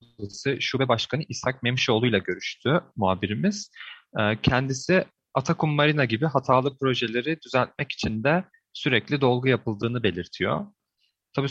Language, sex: Turkish, male